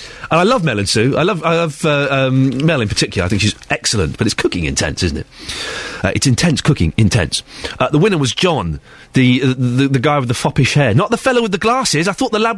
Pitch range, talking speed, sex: 120-195 Hz, 255 wpm, male